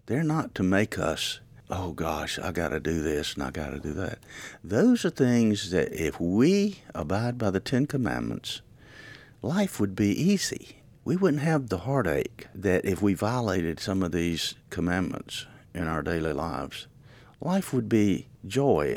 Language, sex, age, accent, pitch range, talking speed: English, male, 50-69, American, 85-130 Hz, 170 wpm